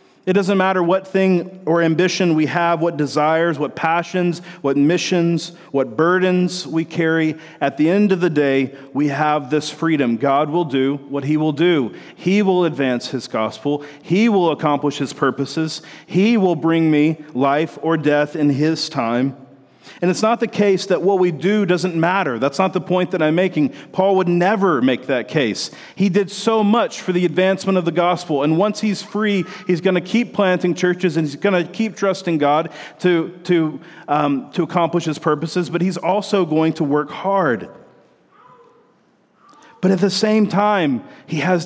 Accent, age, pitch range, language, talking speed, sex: American, 40-59, 150-190 Hz, English, 180 wpm, male